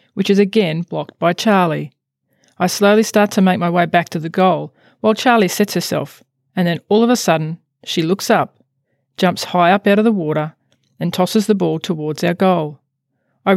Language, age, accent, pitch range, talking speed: English, 40-59, Australian, 150-210 Hz, 200 wpm